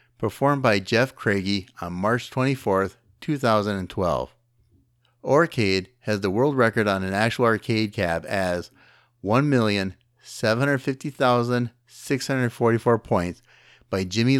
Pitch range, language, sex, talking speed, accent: 100-125 Hz, English, male, 95 wpm, American